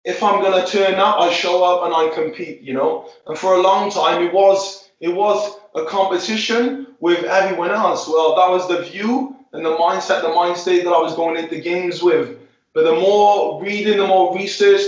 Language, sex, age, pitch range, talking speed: English, male, 20-39, 175-210 Hz, 215 wpm